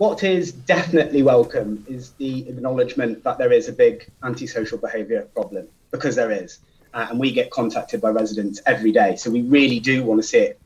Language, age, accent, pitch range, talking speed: English, 30-49, British, 115-170 Hz, 195 wpm